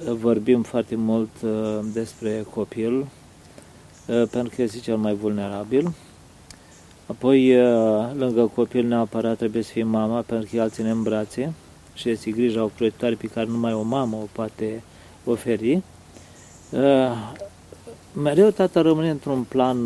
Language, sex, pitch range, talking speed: Romanian, male, 110-125 Hz, 140 wpm